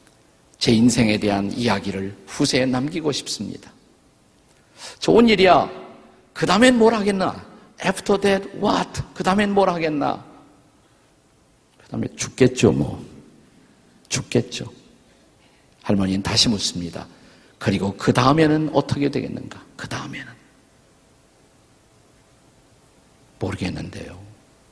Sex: male